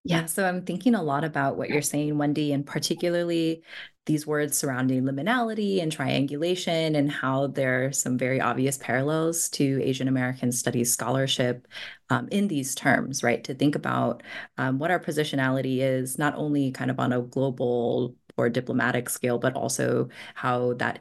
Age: 20-39